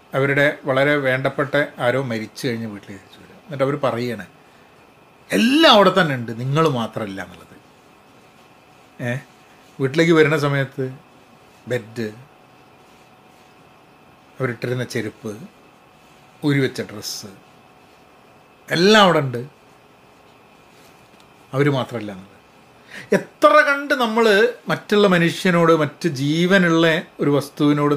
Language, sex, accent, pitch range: Malayalam, male, native, 120-165 Hz